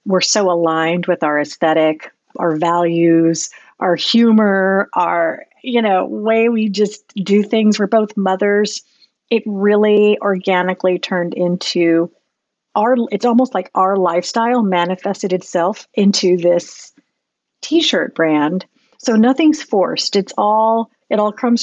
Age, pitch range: 50-69, 175-225 Hz